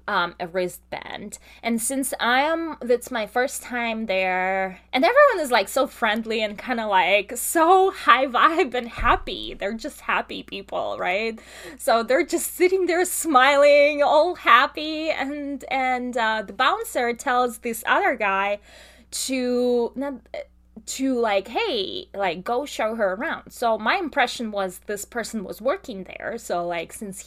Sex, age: female, 20-39